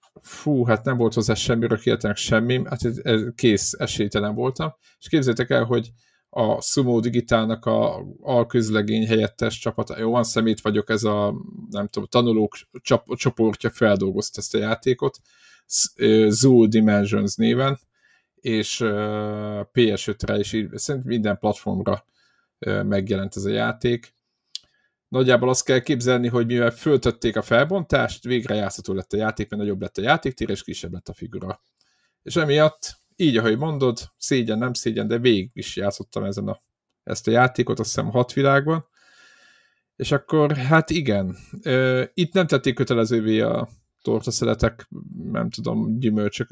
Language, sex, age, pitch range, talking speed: Hungarian, male, 50-69, 105-130 Hz, 140 wpm